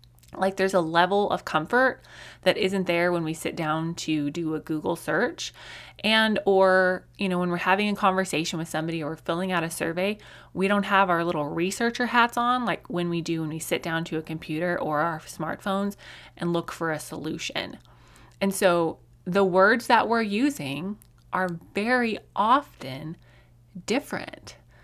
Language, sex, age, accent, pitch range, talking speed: English, female, 20-39, American, 160-210 Hz, 175 wpm